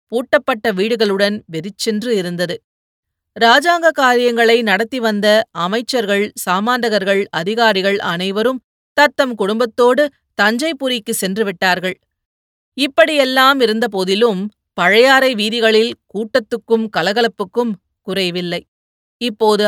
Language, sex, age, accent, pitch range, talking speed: Tamil, female, 30-49, native, 195-240 Hz, 75 wpm